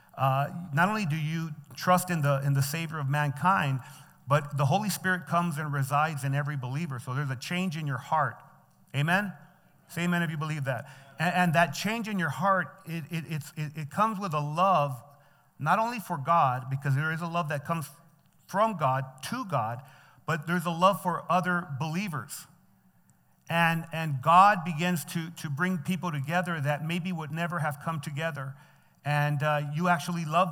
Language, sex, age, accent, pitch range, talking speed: English, male, 40-59, American, 145-180 Hz, 190 wpm